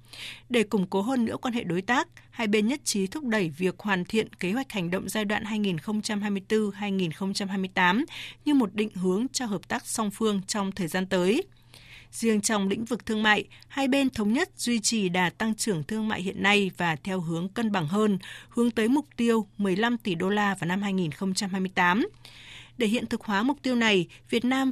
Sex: female